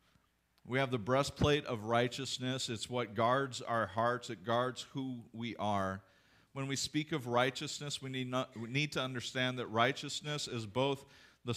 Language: English